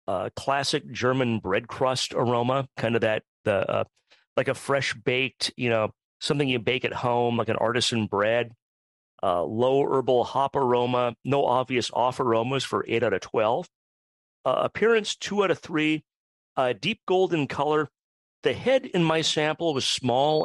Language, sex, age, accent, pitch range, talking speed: English, male, 40-59, American, 110-145 Hz, 165 wpm